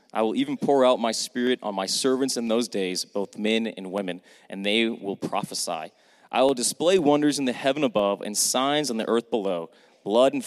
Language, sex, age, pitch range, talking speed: English, male, 30-49, 100-125 Hz, 210 wpm